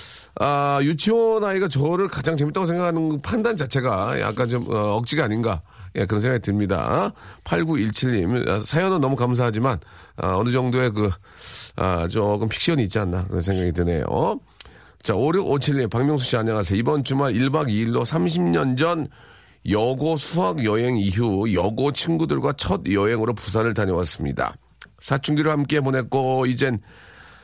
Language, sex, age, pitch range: Korean, male, 40-59, 105-145 Hz